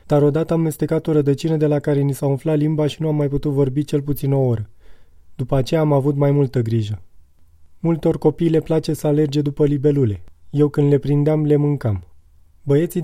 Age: 30-49